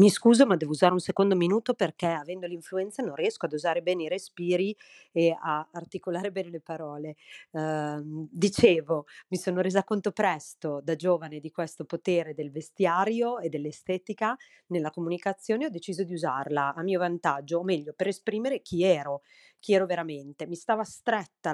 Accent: native